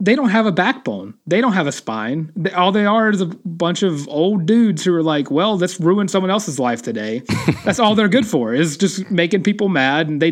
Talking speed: 235 wpm